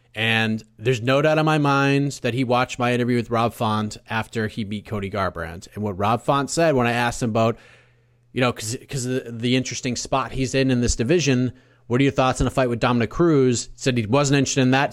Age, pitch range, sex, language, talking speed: 30-49, 115-140 Hz, male, English, 235 wpm